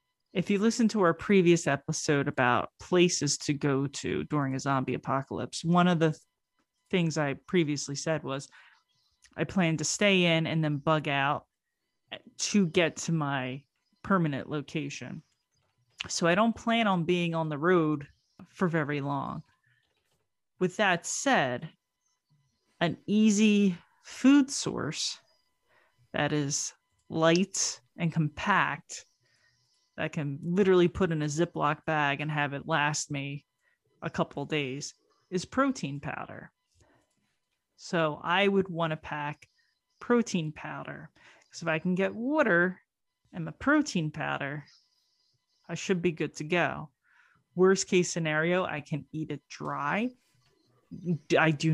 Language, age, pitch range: English, 30-49, 145-185 Hz